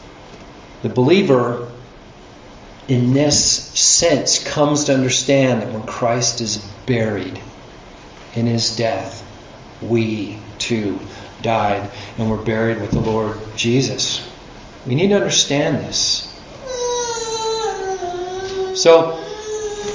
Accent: American